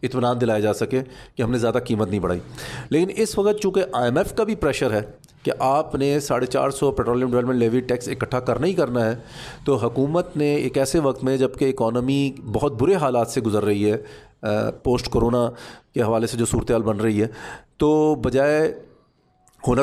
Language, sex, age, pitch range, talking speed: Urdu, male, 40-59, 115-140 Hz, 200 wpm